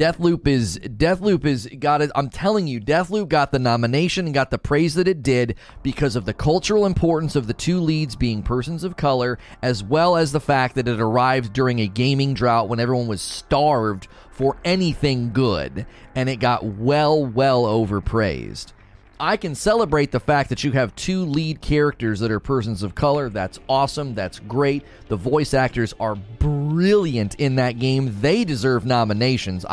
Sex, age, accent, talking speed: male, 30-49, American, 180 wpm